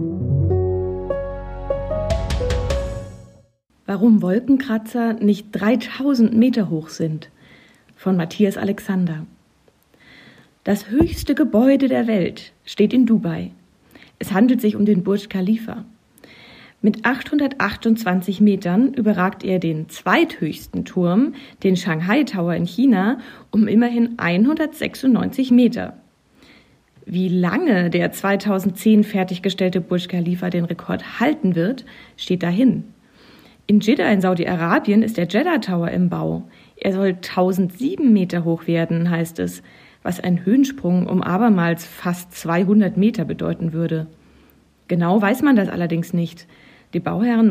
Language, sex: German, female